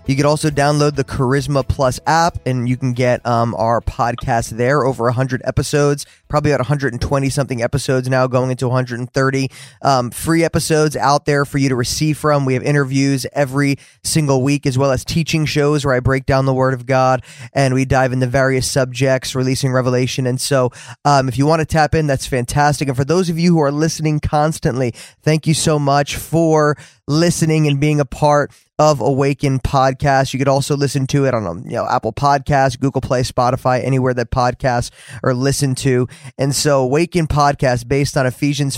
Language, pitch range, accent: English, 130-145 Hz, American